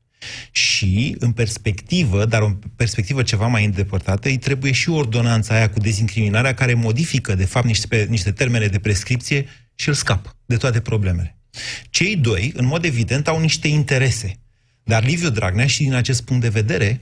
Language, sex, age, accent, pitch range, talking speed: Romanian, male, 30-49, native, 110-130 Hz, 175 wpm